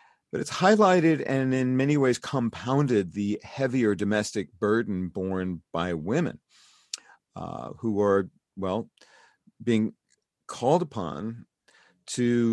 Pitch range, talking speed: 100-135 Hz, 110 wpm